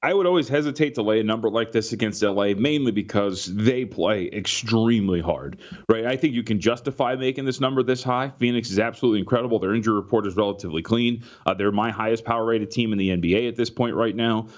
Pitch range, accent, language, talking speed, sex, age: 100-120 Hz, American, English, 220 wpm, male, 30-49